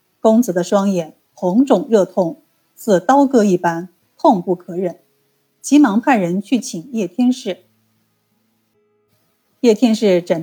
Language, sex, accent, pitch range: Chinese, female, native, 175-230 Hz